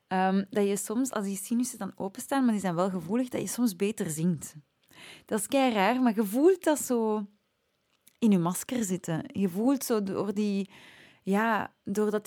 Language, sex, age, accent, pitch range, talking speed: Dutch, female, 20-39, Dutch, 185-235 Hz, 170 wpm